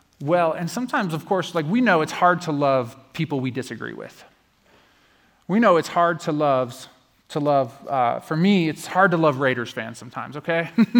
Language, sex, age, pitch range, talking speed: English, male, 30-49, 140-185 Hz, 190 wpm